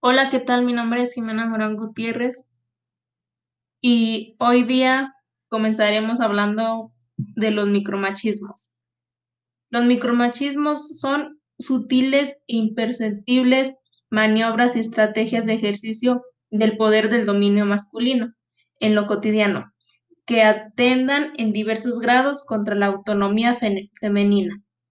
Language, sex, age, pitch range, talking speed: Spanish, female, 20-39, 210-250 Hz, 110 wpm